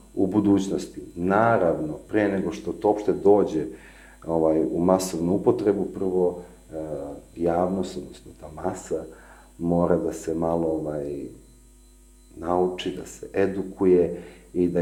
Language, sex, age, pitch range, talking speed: English, male, 40-59, 90-135 Hz, 120 wpm